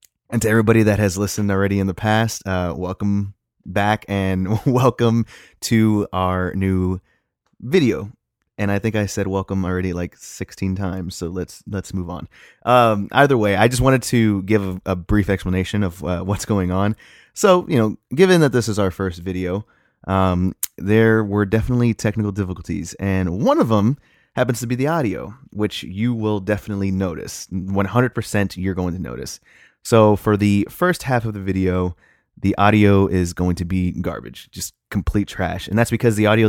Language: English